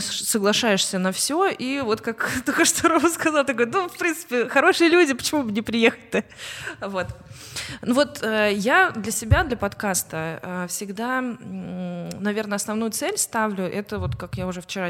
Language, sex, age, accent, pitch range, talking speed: Russian, female, 20-39, native, 180-230 Hz, 155 wpm